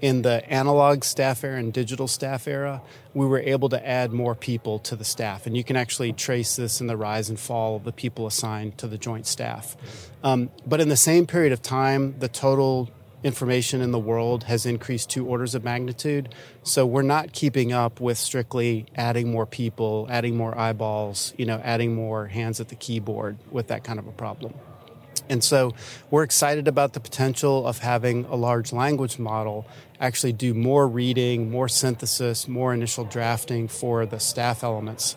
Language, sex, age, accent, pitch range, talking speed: English, male, 30-49, American, 115-135 Hz, 190 wpm